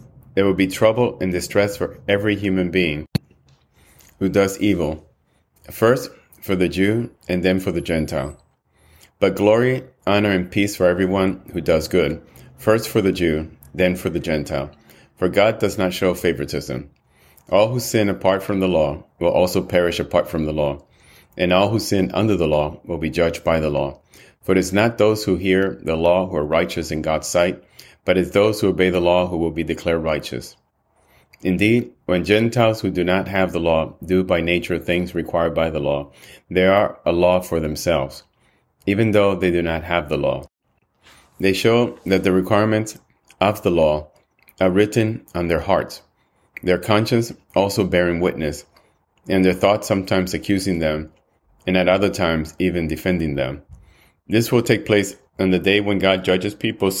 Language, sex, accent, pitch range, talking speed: English, male, American, 85-100 Hz, 180 wpm